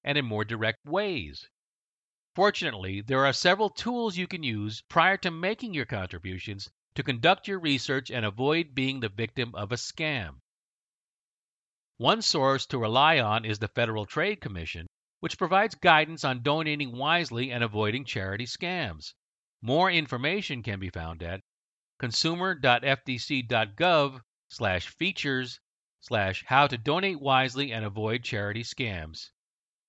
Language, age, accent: English, 50-69, American